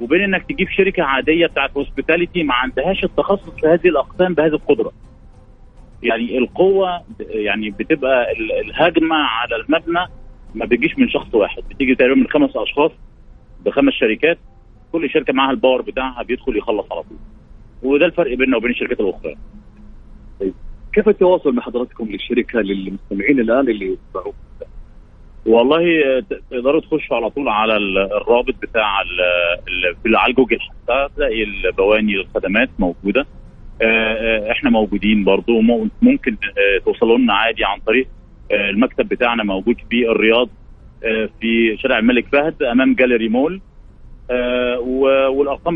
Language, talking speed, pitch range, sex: Arabic, 125 wpm, 110-175 Hz, male